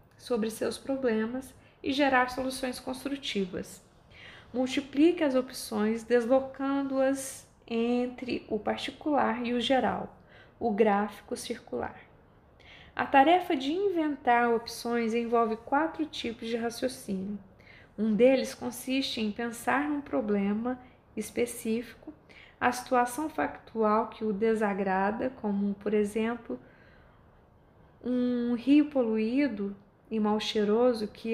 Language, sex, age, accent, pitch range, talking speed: Portuguese, female, 20-39, Brazilian, 220-260 Hz, 105 wpm